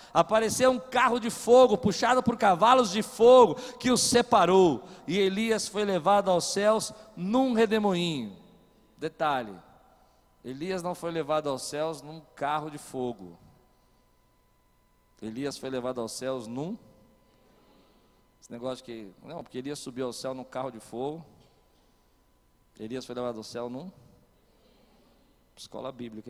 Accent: Brazilian